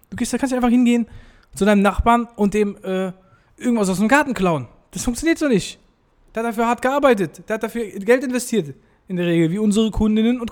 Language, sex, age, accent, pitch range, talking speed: German, male, 20-39, German, 155-230 Hz, 205 wpm